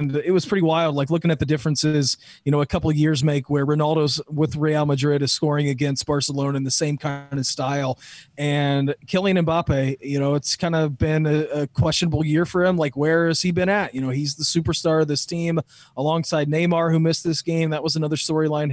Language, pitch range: English, 145-165 Hz